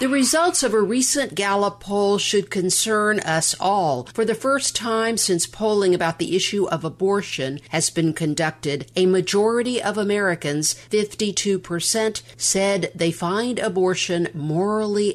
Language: English